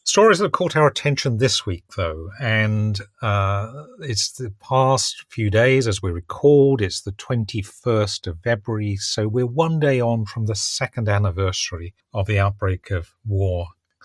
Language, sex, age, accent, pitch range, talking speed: English, male, 40-59, British, 95-115 Hz, 165 wpm